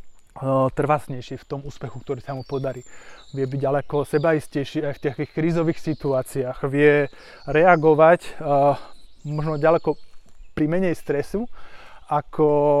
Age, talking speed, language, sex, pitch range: 20-39, 120 wpm, Slovak, male, 135-160 Hz